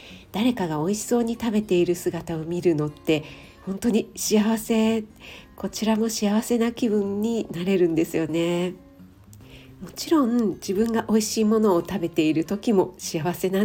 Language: Japanese